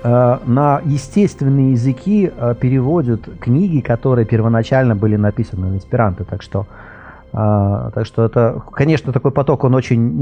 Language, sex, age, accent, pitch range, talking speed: Russian, male, 30-49, native, 100-130 Hz, 125 wpm